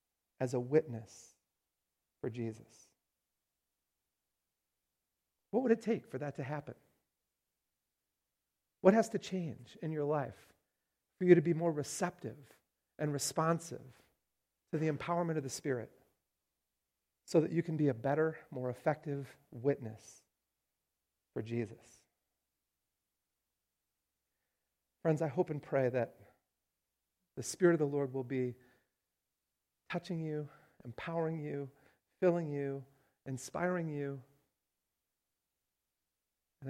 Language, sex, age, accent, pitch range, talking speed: English, male, 40-59, American, 120-155 Hz, 110 wpm